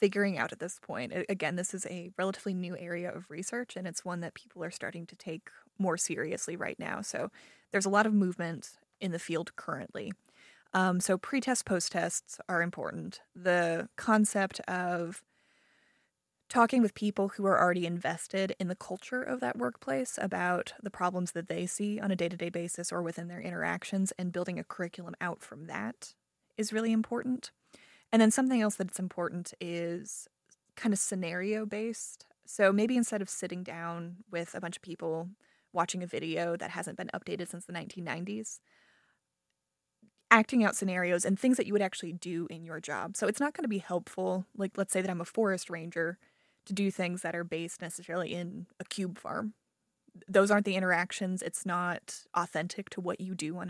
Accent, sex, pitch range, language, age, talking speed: American, female, 170-205 Hz, English, 20-39, 185 wpm